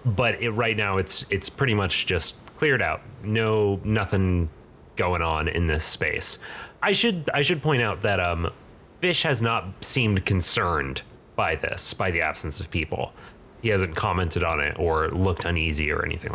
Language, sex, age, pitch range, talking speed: English, male, 30-49, 90-120 Hz, 175 wpm